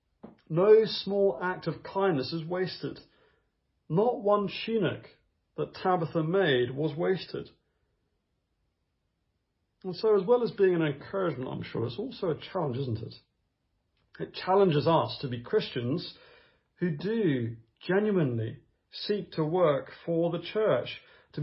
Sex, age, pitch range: male, 40-59, 155-200 Hz